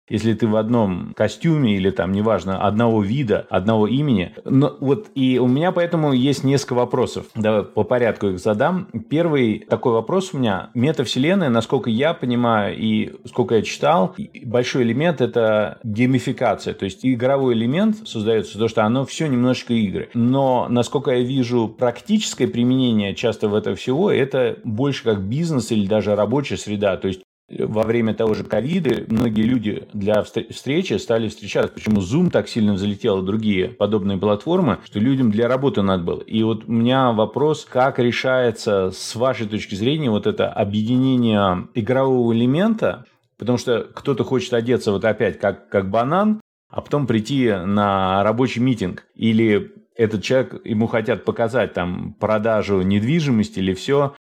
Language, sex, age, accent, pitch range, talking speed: Russian, male, 30-49, native, 105-130 Hz, 155 wpm